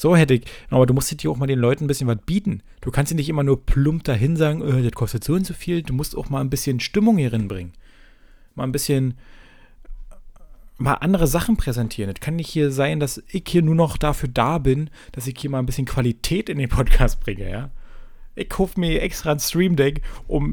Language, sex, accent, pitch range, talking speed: German, male, German, 115-150 Hz, 235 wpm